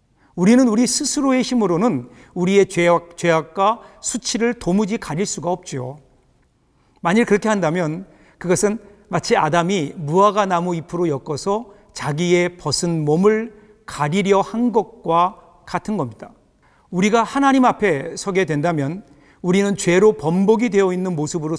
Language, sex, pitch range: Korean, male, 165-220 Hz